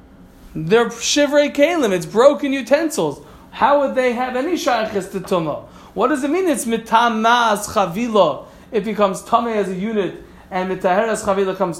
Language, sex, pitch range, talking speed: Malay, male, 185-255 Hz, 160 wpm